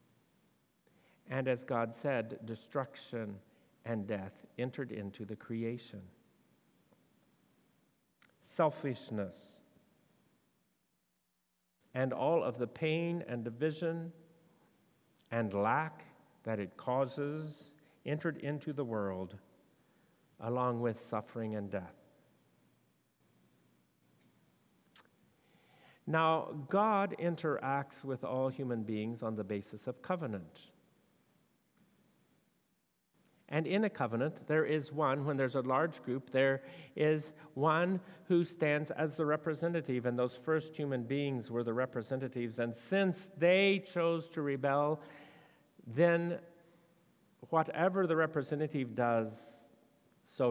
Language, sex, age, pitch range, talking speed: English, male, 50-69, 115-155 Hz, 100 wpm